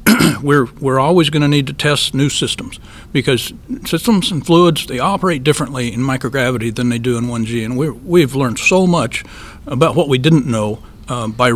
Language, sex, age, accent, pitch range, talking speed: English, male, 60-79, American, 115-155 Hz, 185 wpm